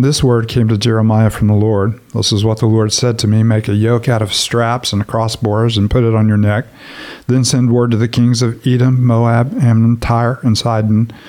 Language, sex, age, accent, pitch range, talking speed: English, male, 50-69, American, 110-125 Hz, 230 wpm